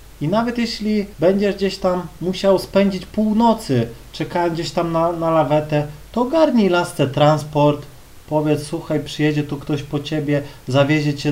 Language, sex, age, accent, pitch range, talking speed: Polish, male, 30-49, native, 150-215 Hz, 150 wpm